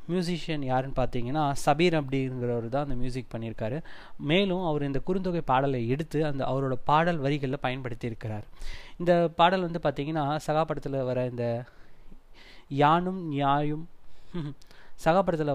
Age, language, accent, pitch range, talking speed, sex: 20-39, Tamil, native, 125-155 Hz, 115 wpm, male